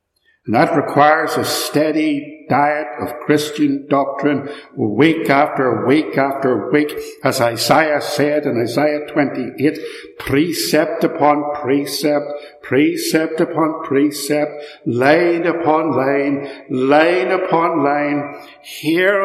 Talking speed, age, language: 105 wpm, 60-79, English